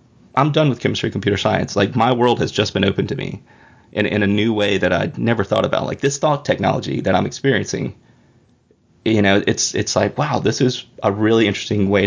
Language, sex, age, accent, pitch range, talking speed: English, male, 30-49, American, 100-130 Hz, 220 wpm